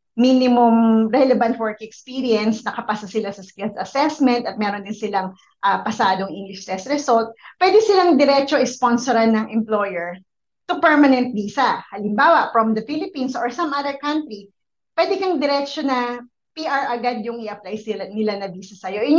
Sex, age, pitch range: female, 20-39, 220-290 Hz